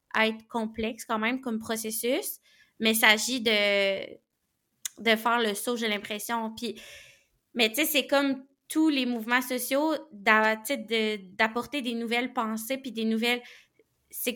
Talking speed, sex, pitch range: 155 wpm, female, 220-255 Hz